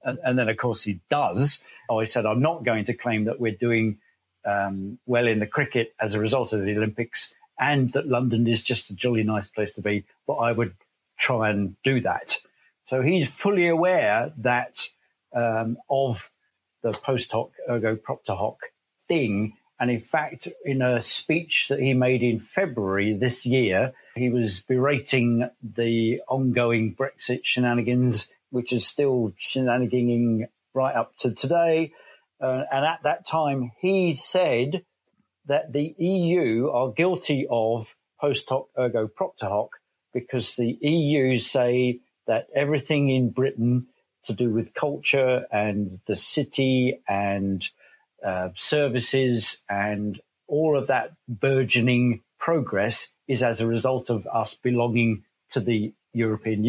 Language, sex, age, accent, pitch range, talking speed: English, male, 50-69, British, 110-135 Hz, 145 wpm